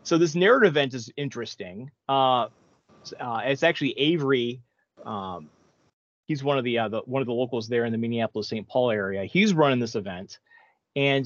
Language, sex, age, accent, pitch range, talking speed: English, male, 30-49, American, 115-140 Hz, 180 wpm